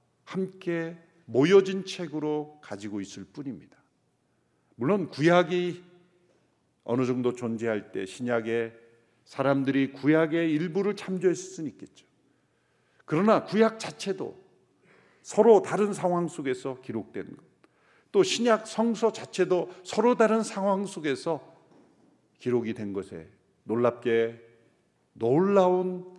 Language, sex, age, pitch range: Korean, male, 50-69, 115-185 Hz